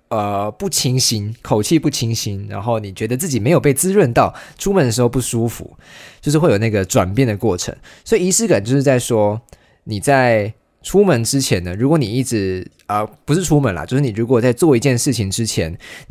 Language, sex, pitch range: Chinese, male, 105-140 Hz